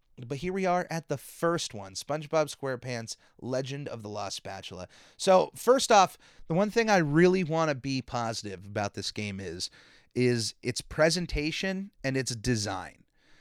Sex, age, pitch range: male, 30-49, 120-165 Hz